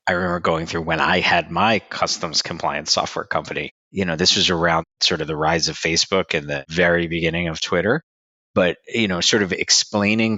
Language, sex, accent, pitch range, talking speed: English, male, American, 75-85 Hz, 200 wpm